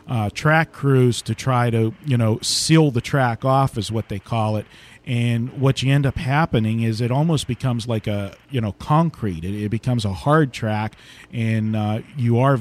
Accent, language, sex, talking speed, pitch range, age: American, English, male, 200 wpm, 110-135 Hz, 40-59